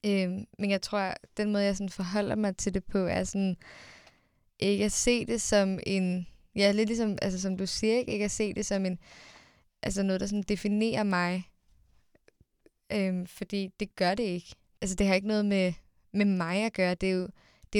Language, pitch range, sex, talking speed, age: Danish, 185-210 Hz, female, 205 wpm, 20-39